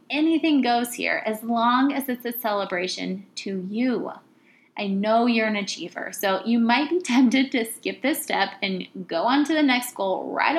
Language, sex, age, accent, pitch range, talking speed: English, female, 20-39, American, 205-270 Hz, 185 wpm